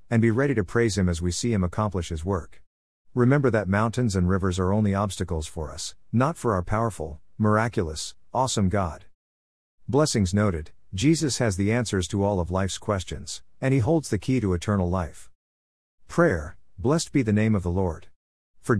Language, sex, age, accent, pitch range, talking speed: English, male, 50-69, American, 90-120 Hz, 185 wpm